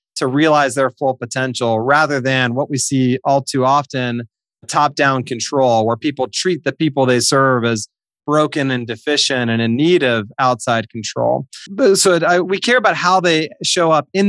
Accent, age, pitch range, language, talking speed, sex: American, 30-49, 125-165 Hz, English, 185 wpm, male